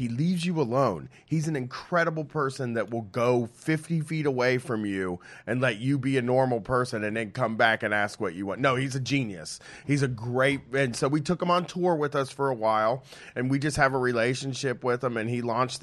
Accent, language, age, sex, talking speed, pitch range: American, English, 30-49, male, 240 wpm, 120-155 Hz